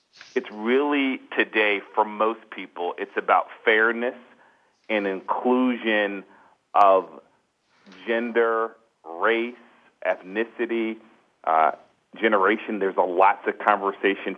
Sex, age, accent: male, 40-59, American